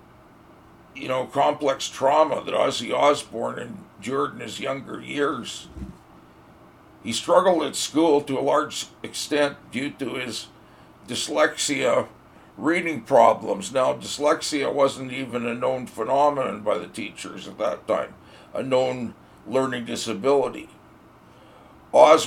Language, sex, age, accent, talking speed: English, male, 60-79, American, 120 wpm